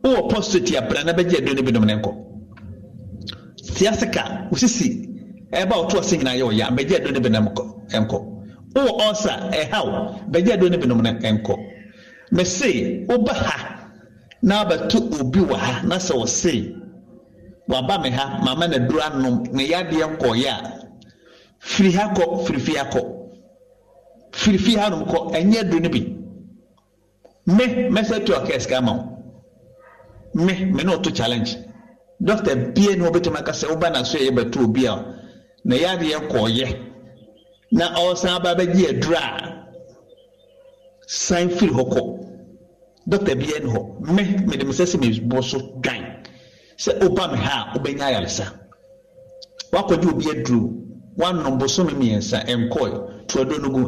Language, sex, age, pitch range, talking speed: English, male, 60-79, 125-205 Hz, 115 wpm